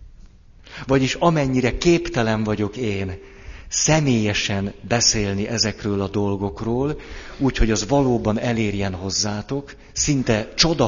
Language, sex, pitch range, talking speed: Hungarian, male, 100-120 Hz, 100 wpm